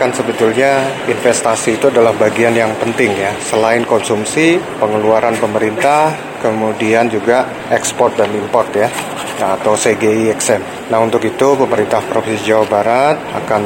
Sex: male